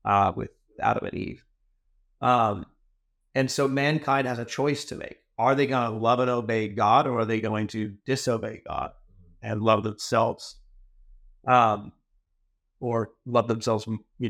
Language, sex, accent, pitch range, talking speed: English, male, American, 110-130 Hz, 155 wpm